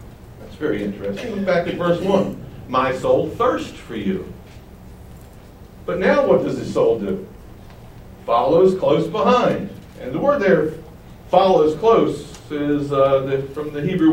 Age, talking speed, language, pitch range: 60-79, 145 wpm, English, 150-195 Hz